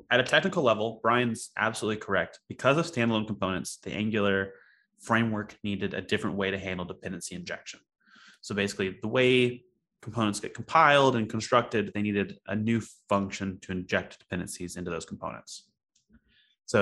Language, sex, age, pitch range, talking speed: English, male, 20-39, 95-115 Hz, 155 wpm